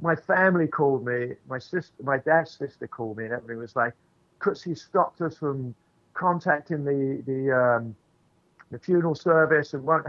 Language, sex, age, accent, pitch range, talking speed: English, male, 50-69, British, 135-165 Hz, 170 wpm